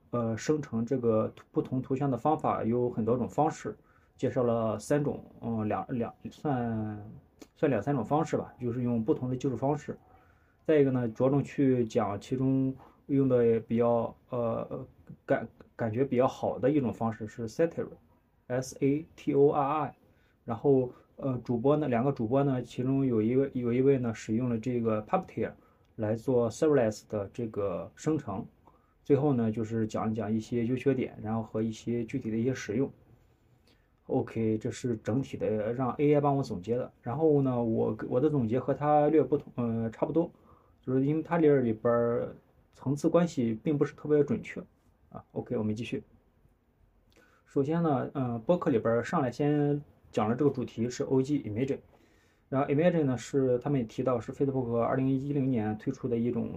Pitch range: 115-140 Hz